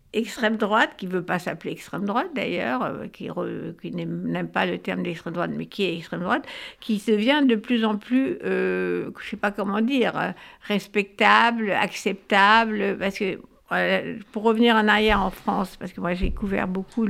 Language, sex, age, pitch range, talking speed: French, female, 60-79, 190-230 Hz, 185 wpm